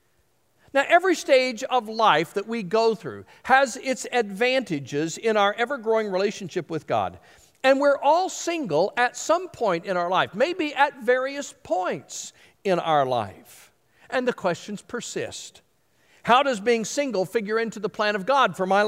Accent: American